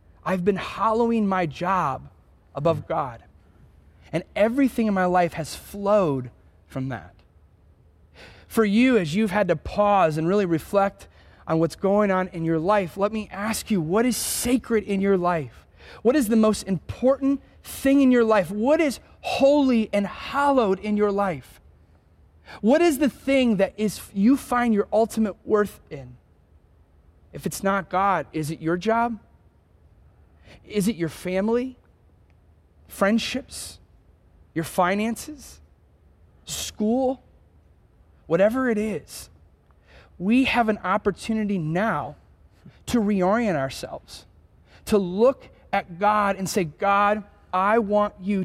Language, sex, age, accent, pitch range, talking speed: English, male, 30-49, American, 160-225 Hz, 135 wpm